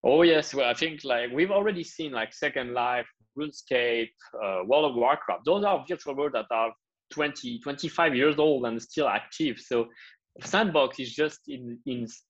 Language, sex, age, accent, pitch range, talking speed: English, male, 20-39, French, 115-140 Hz, 170 wpm